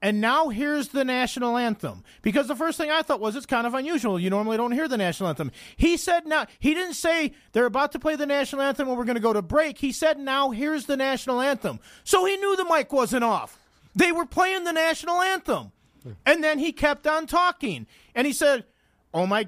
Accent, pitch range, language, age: American, 230-300 Hz, English, 40-59